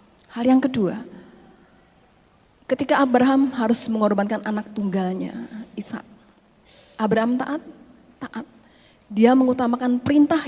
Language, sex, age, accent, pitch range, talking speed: Indonesian, female, 30-49, native, 205-255 Hz, 90 wpm